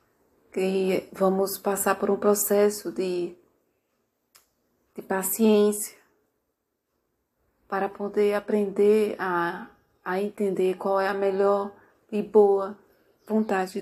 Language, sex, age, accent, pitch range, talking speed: Portuguese, female, 30-49, Brazilian, 195-220 Hz, 95 wpm